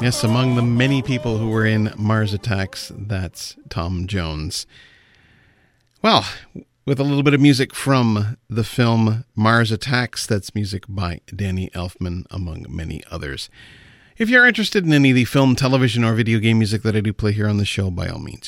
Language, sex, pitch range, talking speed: English, male, 105-140 Hz, 185 wpm